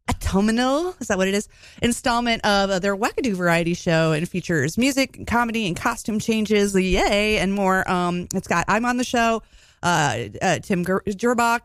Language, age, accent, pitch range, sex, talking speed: English, 30-49, American, 185-260 Hz, female, 175 wpm